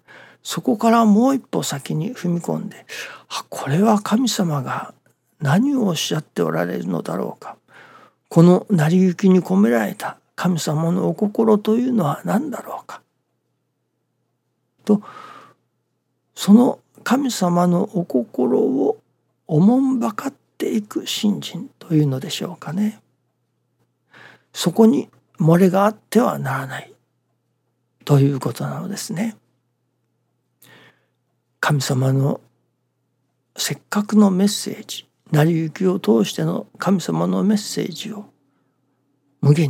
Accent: native